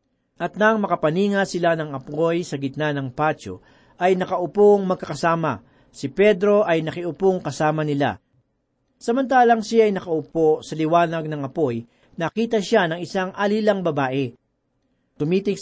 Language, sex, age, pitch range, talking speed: Filipino, male, 40-59, 155-210 Hz, 130 wpm